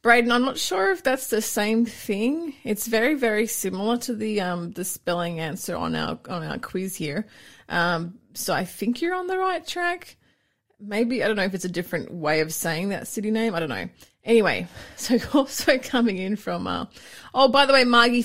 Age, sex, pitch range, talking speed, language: 30-49, female, 175-235 Hz, 205 wpm, English